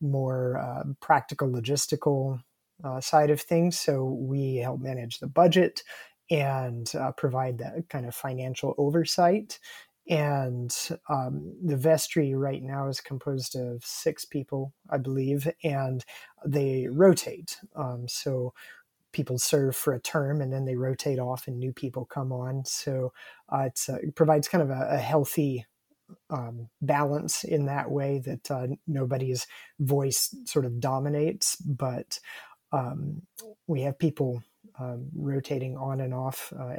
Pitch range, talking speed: 130-150 Hz, 145 wpm